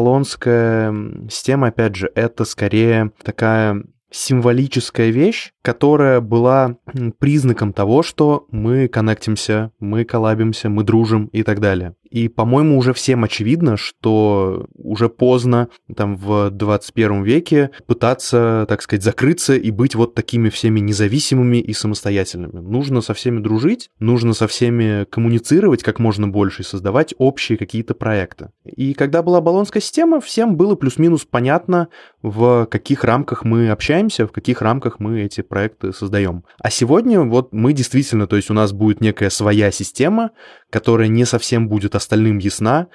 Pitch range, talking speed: 105-130 Hz, 145 wpm